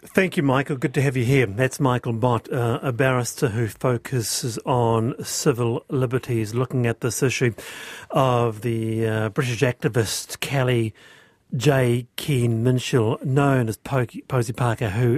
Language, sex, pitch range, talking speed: English, male, 125-155 Hz, 150 wpm